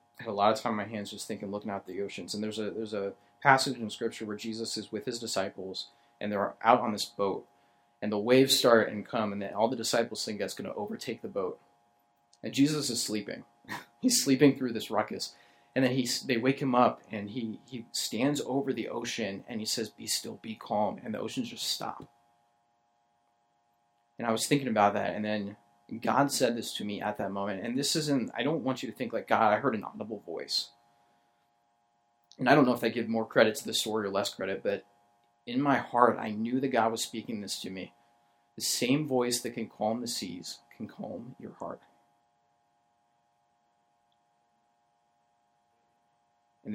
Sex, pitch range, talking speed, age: male, 110-120 Hz, 205 wpm, 30-49